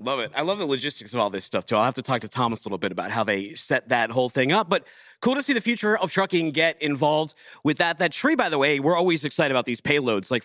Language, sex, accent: English, male, American